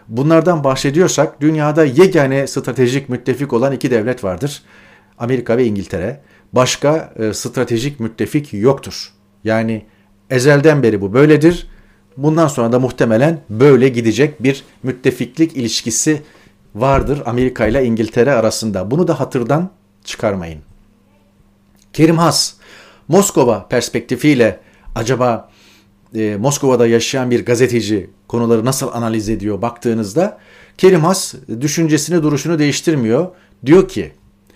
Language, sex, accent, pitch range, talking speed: Turkish, male, native, 110-150 Hz, 110 wpm